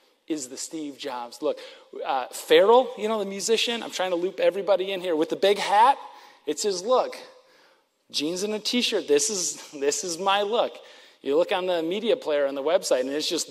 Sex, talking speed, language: male, 205 wpm, English